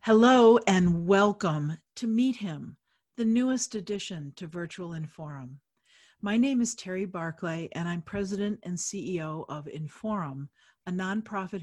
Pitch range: 160-210 Hz